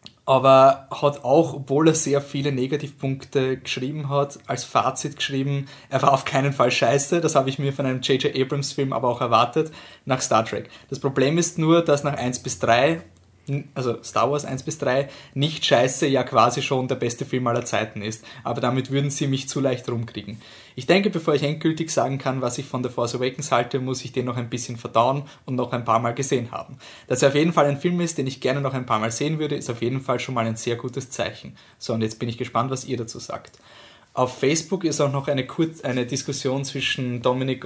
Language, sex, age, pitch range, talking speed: German, male, 20-39, 120-140 Hz, 225 wpm